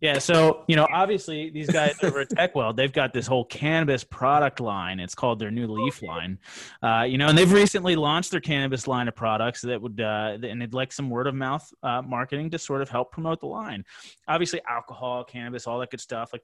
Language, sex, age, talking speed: English, male, 30-49, 225 wpm